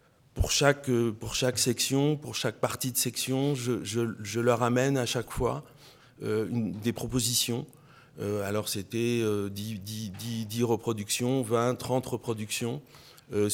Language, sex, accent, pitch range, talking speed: French, male, French, 100-125 Hz, 150 wpm